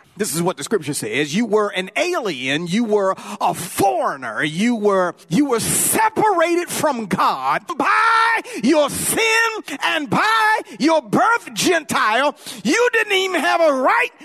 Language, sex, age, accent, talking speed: English, male, 40-59, American, 145 wpm